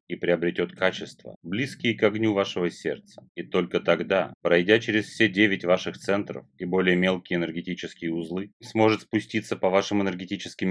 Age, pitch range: 30-49, 85-105 Hz